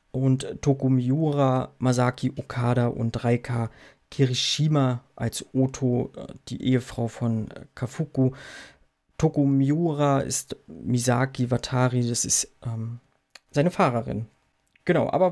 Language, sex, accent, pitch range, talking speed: German, male, German, 125-145 Hz, 95 wpm